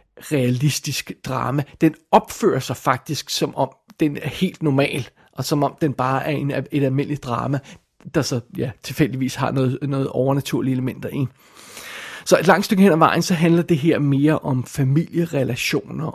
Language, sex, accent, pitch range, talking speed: Danish, male, native, 135-160 Hz, 170 wpm